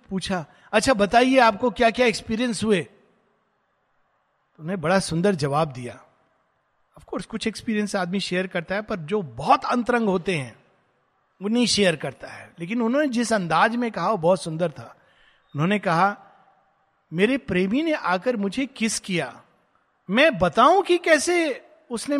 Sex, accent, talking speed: male, native, 150 wpm